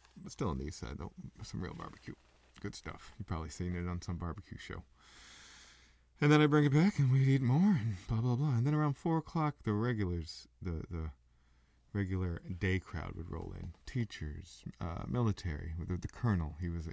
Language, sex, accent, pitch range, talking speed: English, male, American, 75-95 Hz, 200 wpm